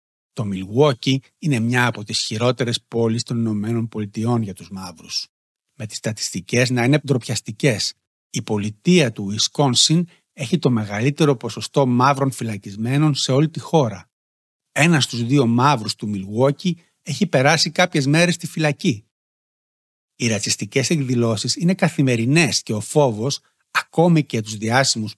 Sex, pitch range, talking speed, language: male, 115-150 Hz, 135 wpm, Greek